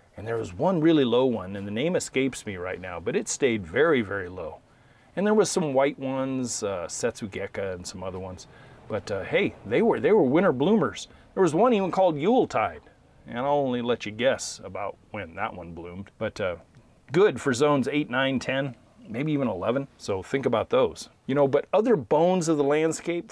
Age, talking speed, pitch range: 40-59, 210 wpm, 100-150 Hz